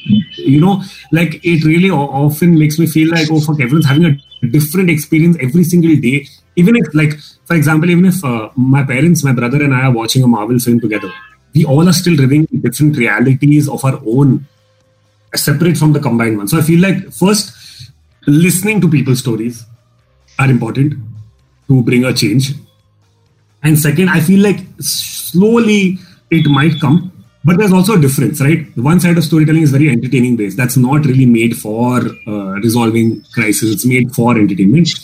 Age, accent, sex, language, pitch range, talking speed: 30-49, Indian, male, English, 125-170 Hz, 180 wpm